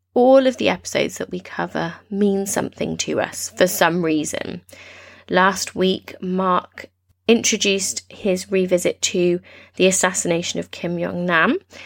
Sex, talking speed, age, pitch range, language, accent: female, 130 wpm, 20-39, 175-235 Hz, English, British